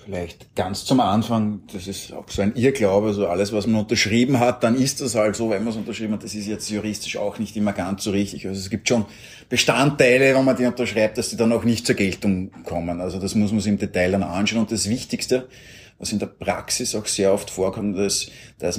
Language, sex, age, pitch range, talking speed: German, male, 30-49, 100-115 Hz, 245 wpm